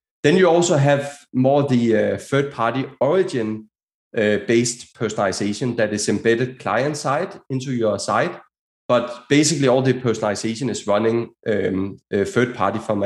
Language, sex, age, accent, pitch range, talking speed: English, male, 30-49, Danish, 110-140 Hz, 120 wpm